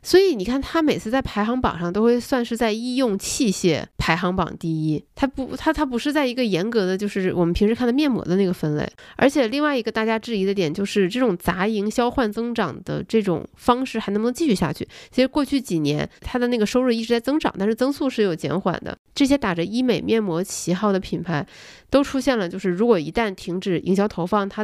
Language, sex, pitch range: Chinese, female, 185-245 Hz